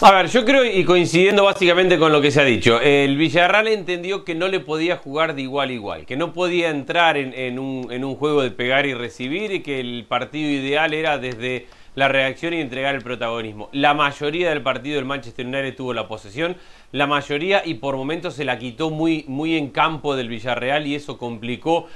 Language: Spanish